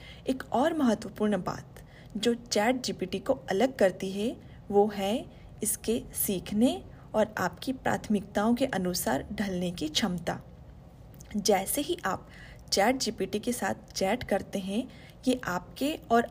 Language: Hindi